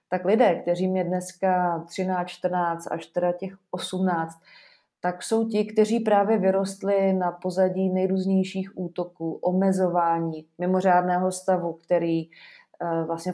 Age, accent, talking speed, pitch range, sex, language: 20-39, native, 115 wpm, 175-195 Hz, female, Czech